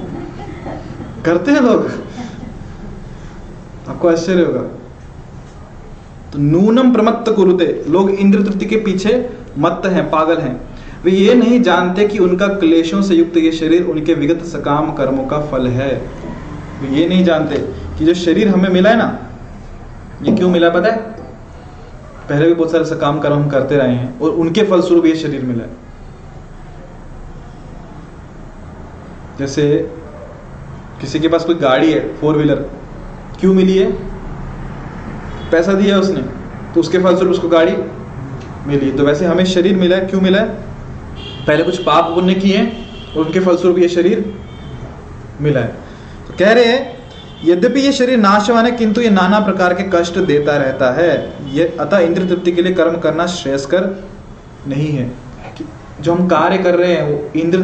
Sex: male